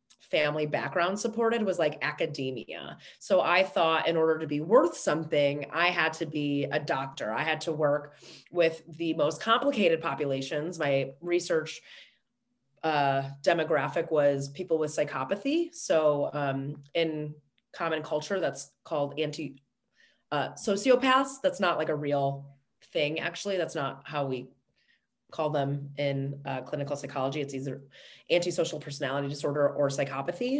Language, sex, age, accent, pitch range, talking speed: English, female, 30-49, American, 145-175 Hz, 140 wpm